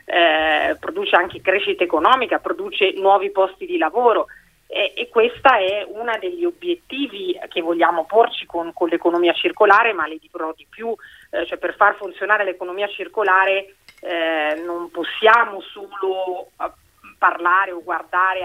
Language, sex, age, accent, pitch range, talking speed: Italian, female, 30-49, native, 175-215 Hz, 140 wpm